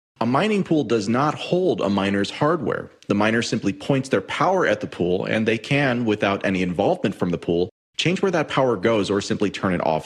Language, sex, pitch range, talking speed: English, male, 95-120 Hz, 220 wpm